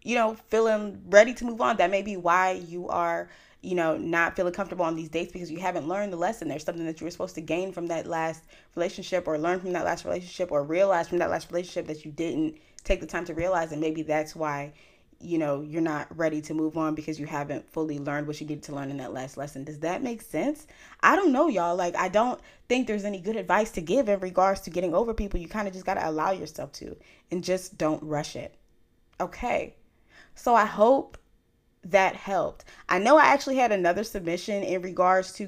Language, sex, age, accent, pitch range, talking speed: English, female, 20-39, American, 155-190 Hz, 235 wpm